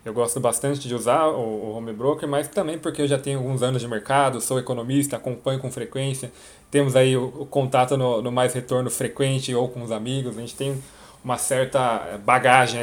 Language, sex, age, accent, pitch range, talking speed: Portuguese, male, 20-39, Brazilian, 120-155 Hz, 200 wpm